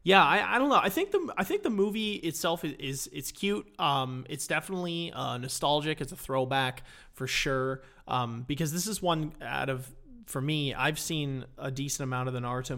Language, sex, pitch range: English, male, 130-165 Hz